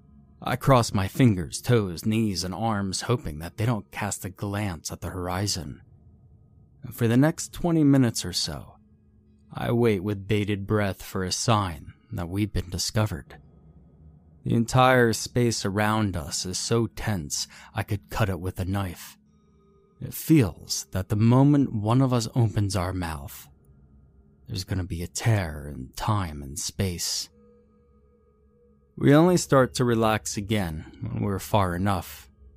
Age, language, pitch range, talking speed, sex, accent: 30-49, English, 80-115 Hz, 155 wpm, male, American